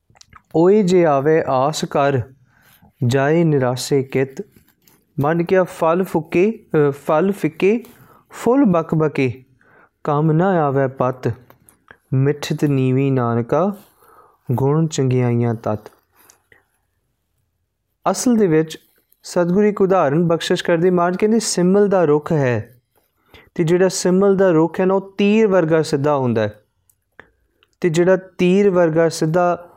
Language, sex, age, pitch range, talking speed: Punjabi, male, 30-49, 130-175 Hz, 115 wpm